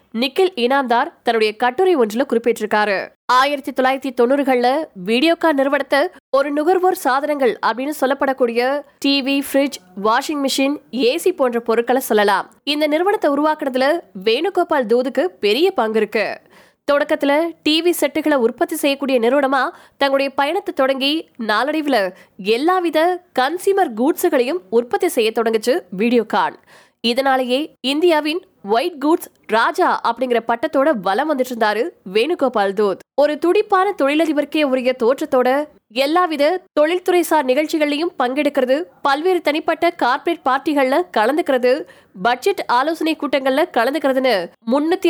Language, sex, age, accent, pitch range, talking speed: Tamil, female, 20-39, native, 255-330 Hz, 40 wpm